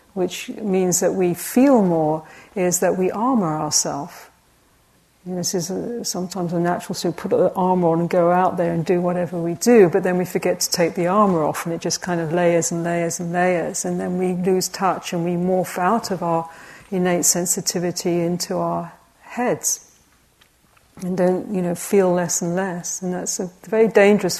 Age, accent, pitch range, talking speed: 50-69, British, 170-190 Hz, 195 wpm